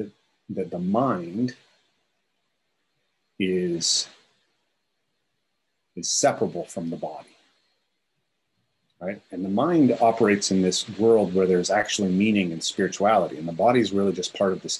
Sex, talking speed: male, 130 wpm